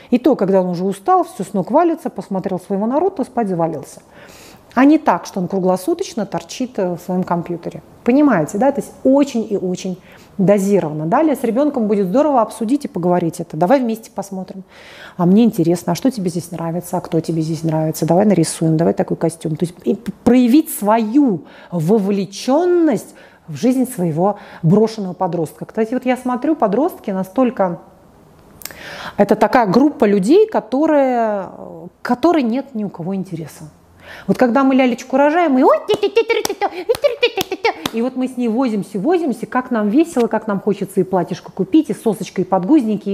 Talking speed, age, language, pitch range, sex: 160 wpm, 40-59, Russian, 185-270 Hz, female